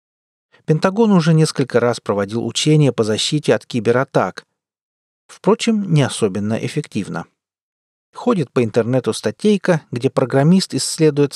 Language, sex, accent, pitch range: Russian, male, native, 120-165 Hz